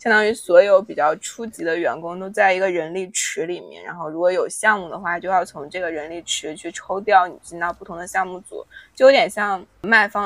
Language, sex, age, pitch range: Chinese, female, 20-39, 180-220 Hz